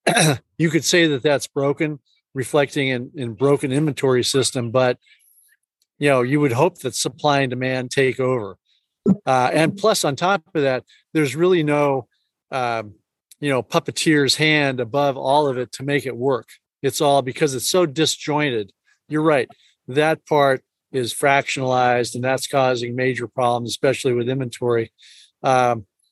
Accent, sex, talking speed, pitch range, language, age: American, male, 155 wpm, 125-150 Hz, English, 50-69